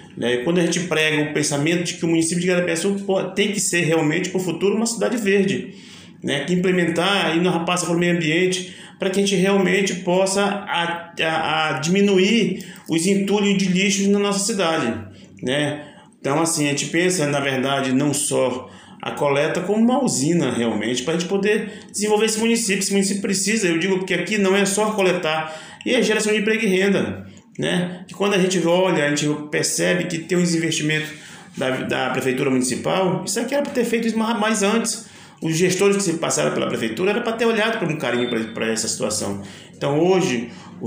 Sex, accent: male, Brazilian